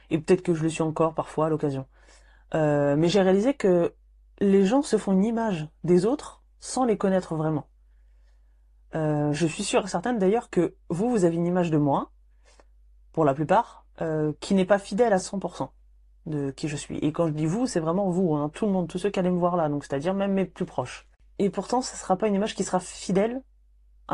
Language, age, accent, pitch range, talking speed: French, 20-39, French, 145-195 Hz, 225 wpm